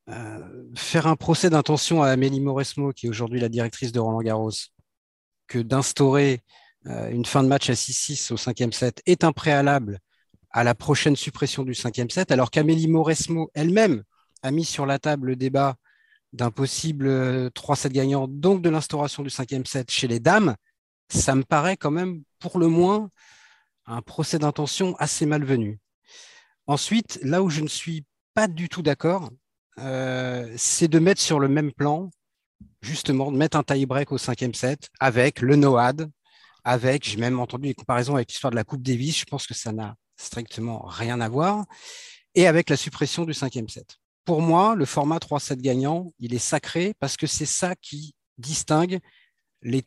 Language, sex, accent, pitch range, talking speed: French, male, French, 125-160 Hz, 180 wpm